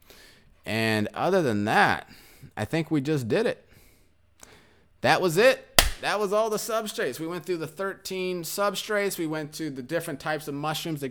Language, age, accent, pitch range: English, 30-49, American, 110-160 Hz